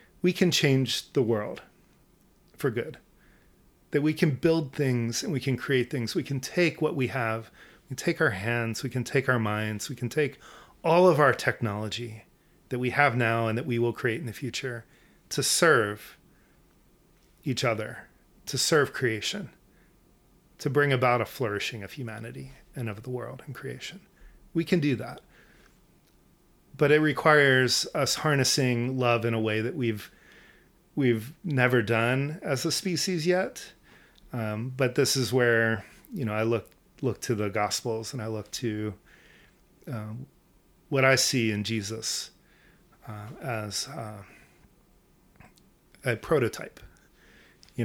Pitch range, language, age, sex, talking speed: 110-140 Hz, English, 30-49, male, 155 wpm